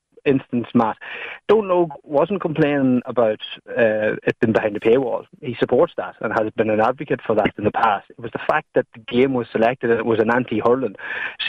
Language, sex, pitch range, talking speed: English, male, 115-145 Hz, 215 wpm